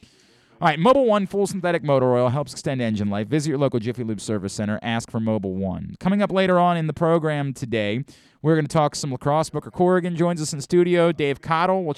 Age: 30-49